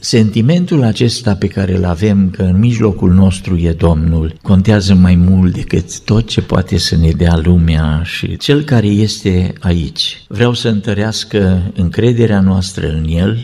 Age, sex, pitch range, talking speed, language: 50-69, male, 95-115 Hz, 155 wpm, Romanian